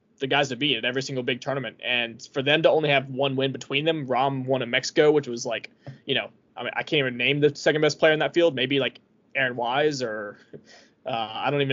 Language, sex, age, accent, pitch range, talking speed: English, male, 20-39, American, 125-145 Hz, 255 wpm